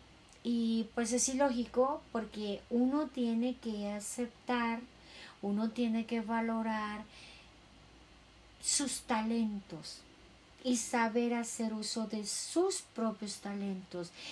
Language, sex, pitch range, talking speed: Spanish, female, 185-240 Hz, 95 wpm